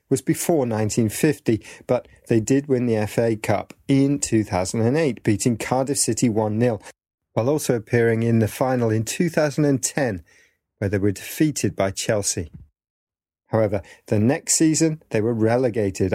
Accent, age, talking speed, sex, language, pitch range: British, 40-59, 140 wpm, male, English, 105-135 Hz